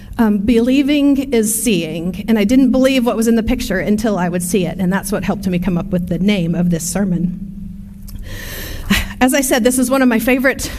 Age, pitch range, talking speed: 40-59, 205-285 Hz, 220 wpm